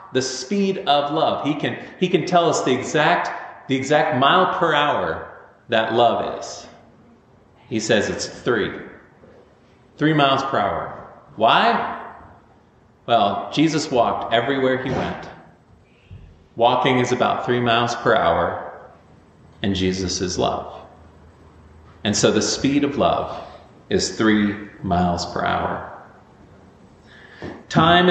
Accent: American